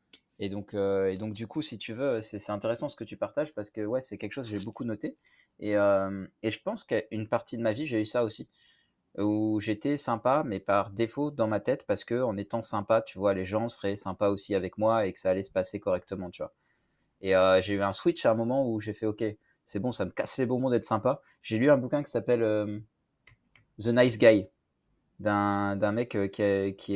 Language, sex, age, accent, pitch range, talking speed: French, male, 20-39, French, 100-120 Hz, 245 wpm